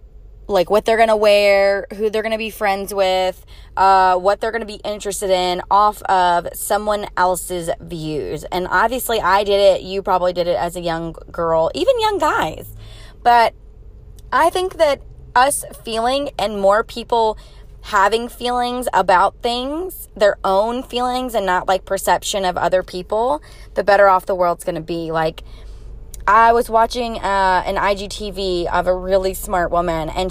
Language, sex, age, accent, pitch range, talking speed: English, female, 20-39, American, 185-245 Hz, 170 wpm